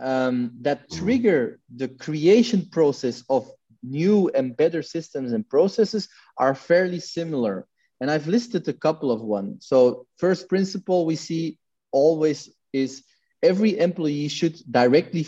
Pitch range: 135-185 Hz